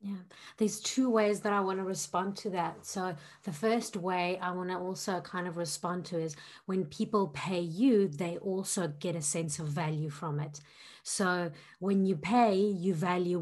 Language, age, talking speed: English, 30-49, 190 wpm